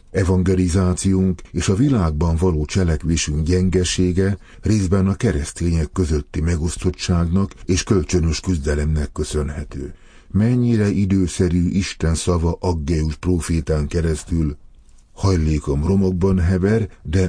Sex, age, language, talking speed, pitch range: male, 50-69, Hungarian, 95 wpm, 80-95 Hz